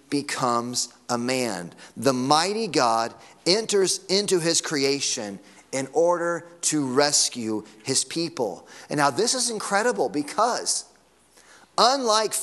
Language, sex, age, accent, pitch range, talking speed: English, male, 30-49, American, 150-220 Hz, 110 wpm